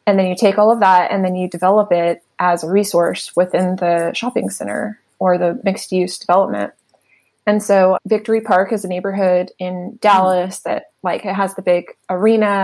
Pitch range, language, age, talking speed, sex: 180-210 Hz, English, 20-39, 190 wpm, female